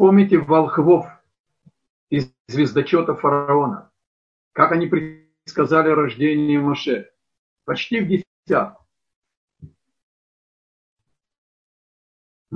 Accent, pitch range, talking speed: native, 130-185 Hz, 60 wpm